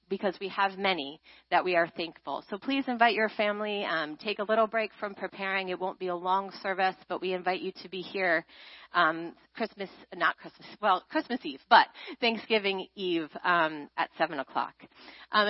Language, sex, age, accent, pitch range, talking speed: English, female, 30-49, American, 190-235 Hz, 185 wpm